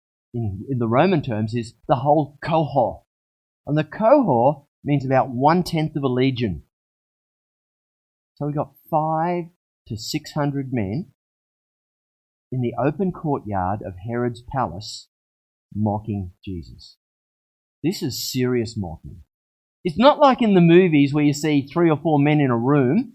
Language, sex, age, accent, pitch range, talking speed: English, male, 30-49, Australian, 105-155 Hz, 140 wpm